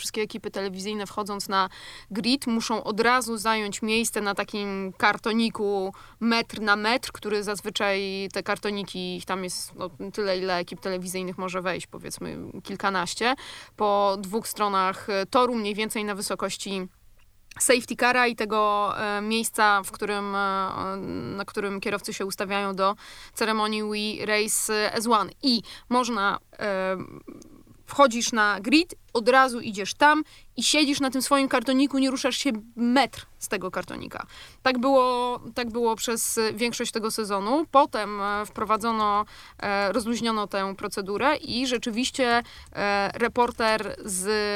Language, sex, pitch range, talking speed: Polish, female, 200-235 Hz, 130 wpm